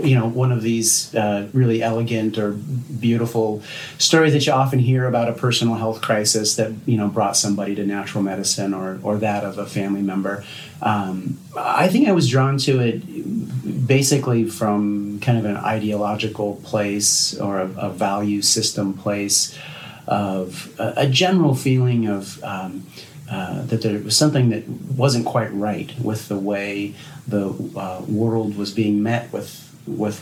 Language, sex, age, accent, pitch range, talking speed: English, male, 40-59, American, 105-125 Hz, 165 wpm